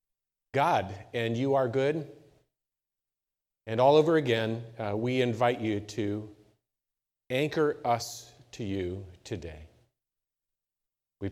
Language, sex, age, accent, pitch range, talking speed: English, male, 40-59, American, 105-130 Hz, 105 wpm